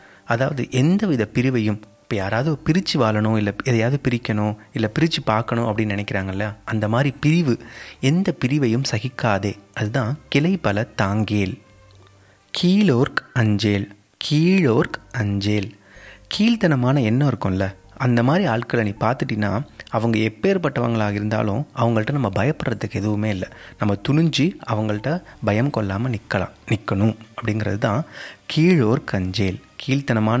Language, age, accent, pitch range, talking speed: English, 30-49, Indian, 105-140 Hz, 100 wpm